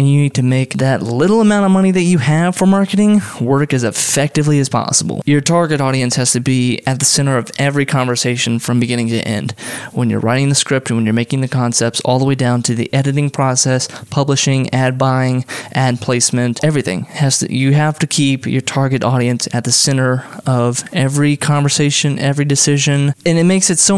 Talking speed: 205 wpm